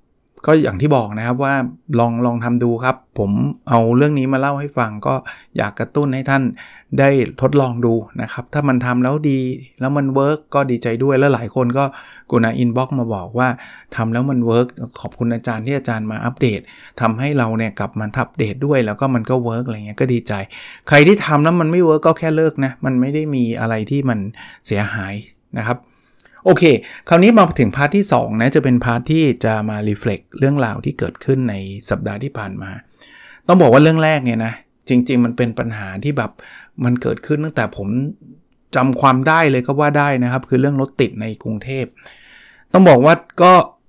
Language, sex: Thai, male